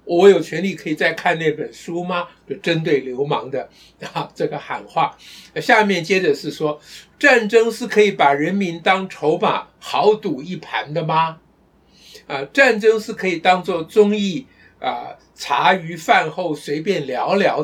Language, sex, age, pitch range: Chinese, male, 60-79, 170-225 Hz